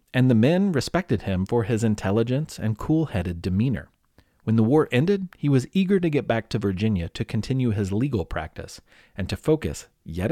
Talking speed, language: 185 wpm, English